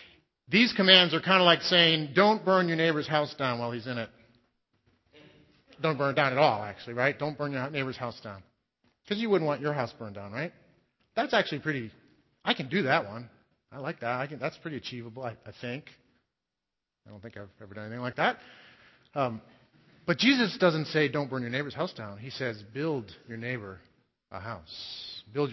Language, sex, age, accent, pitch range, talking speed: English, male, 40-59, American, 115-155 Hz, 200 wpm